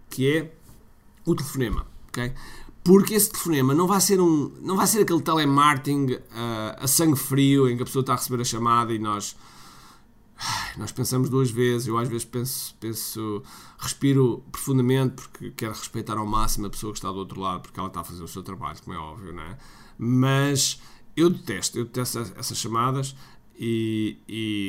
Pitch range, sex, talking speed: 115-150 Hz, male, 175 wpm